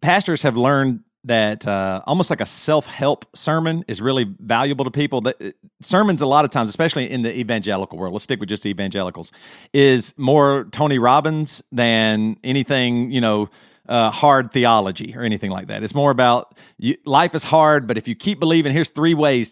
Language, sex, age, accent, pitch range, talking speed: English, male, 40-59, American, 120-155 Hz, 190 wpm